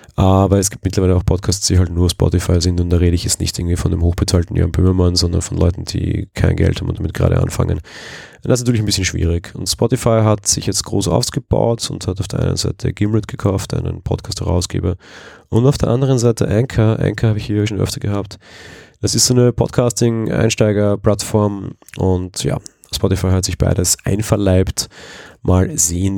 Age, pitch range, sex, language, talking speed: 30-49, 90-110 Hz, male, German, 195 wpm